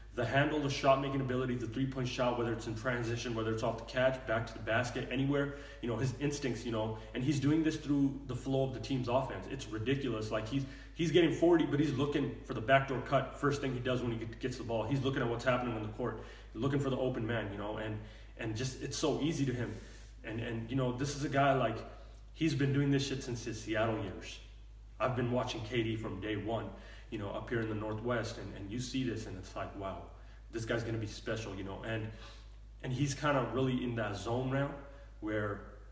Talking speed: 240 wpm